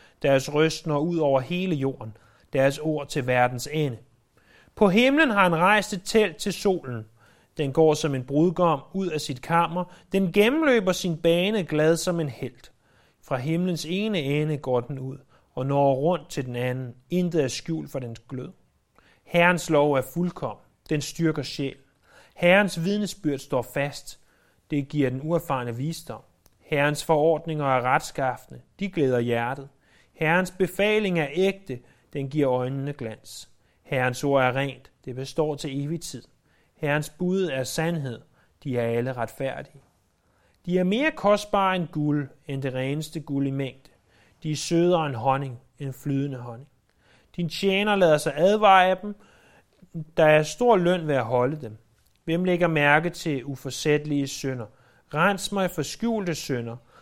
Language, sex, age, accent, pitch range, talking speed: Danish, male, 30-49, native, 130-175 Hz, 160 wpm